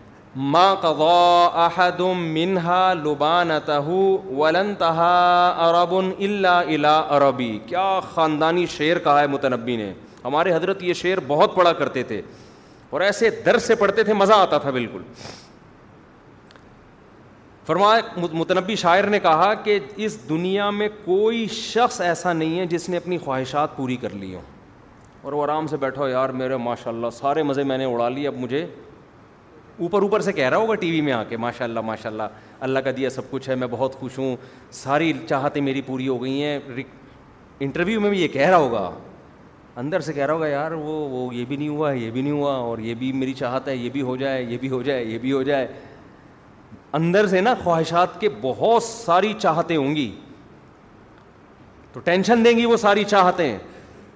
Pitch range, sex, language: 130-180 Hz, male, Urdu